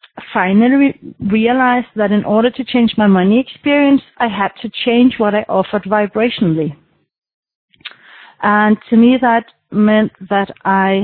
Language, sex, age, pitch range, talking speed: English, female, 40-59, 190-235 Hz, 135 wpm